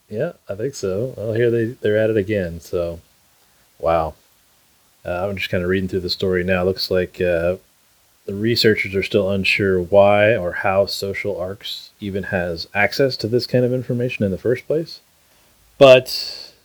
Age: 30-49